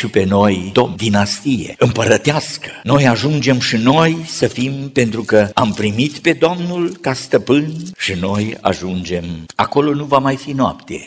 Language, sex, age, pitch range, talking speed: Romanian, male, 50-69, 105-155 Hz, 155 wpm